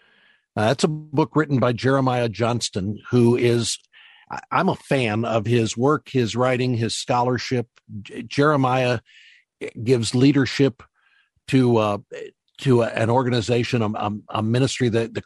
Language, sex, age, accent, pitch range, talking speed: English, male, 50-69, American, 110-130 Hz, 140 wpm